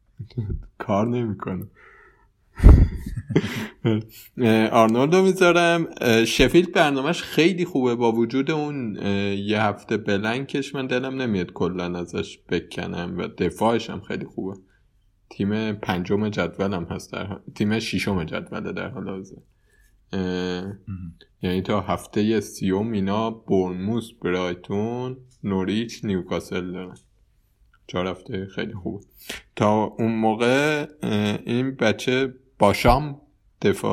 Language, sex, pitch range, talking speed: Persian, male, 95-120 Hz, 100 wpm